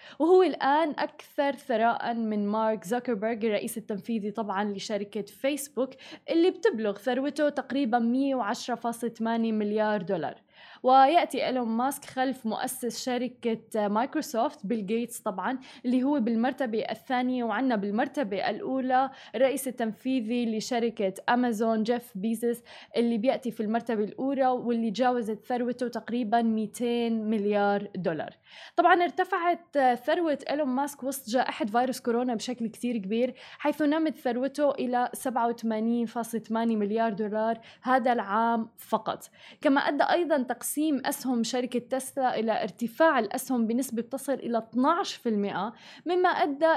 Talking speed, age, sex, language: 115 wpm, 10-29, female, Arabic